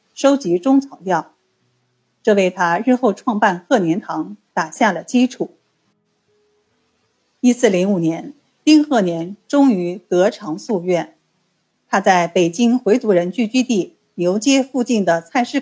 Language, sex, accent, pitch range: Chinese, female, native, 175-255 Hz